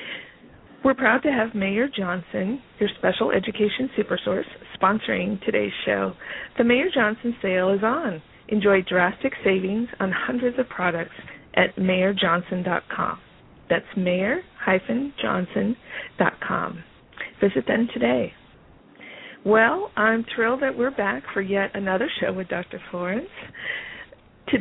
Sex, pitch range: female, 185-225 Hz